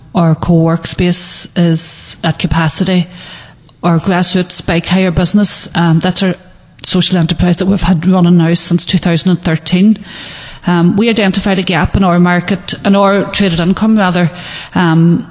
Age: 30-49